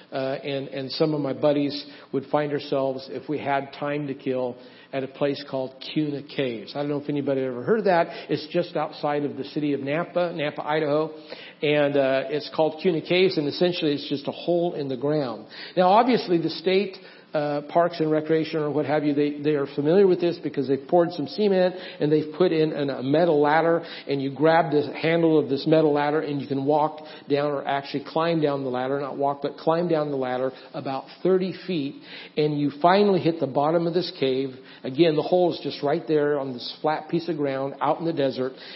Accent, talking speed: American, 220 wpm